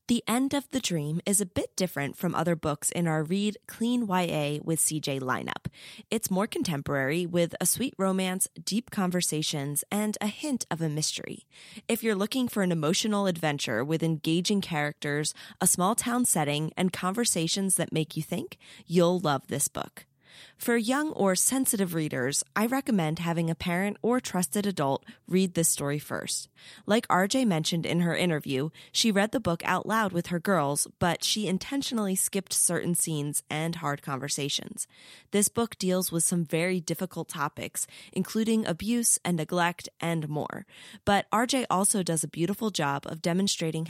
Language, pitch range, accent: English, 160-210 Hz, American